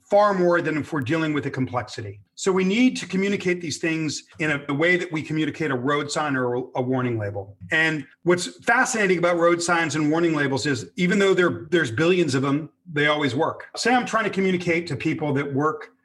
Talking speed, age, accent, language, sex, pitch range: 215 wpm, 40-59, American, English, male, 135-180 Hz